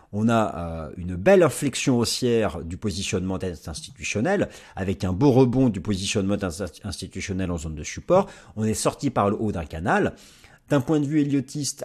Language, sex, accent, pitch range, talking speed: French, male, French, 90-135 Hz, 170 wpm